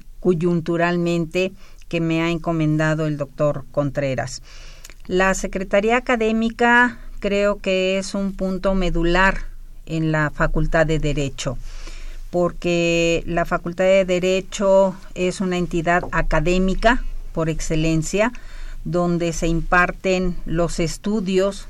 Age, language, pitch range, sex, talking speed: 50-69, Spanish, 160-190 Hz, female, 105 wpm